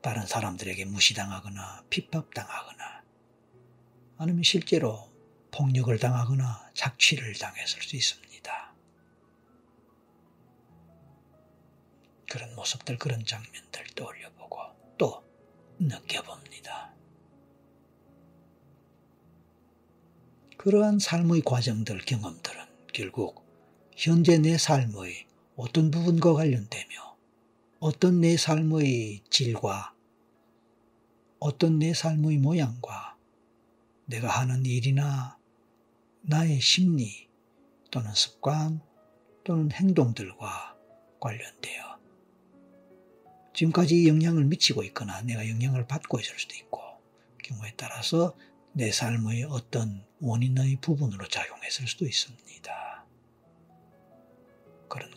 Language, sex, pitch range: Korean, male, 110-150 Hz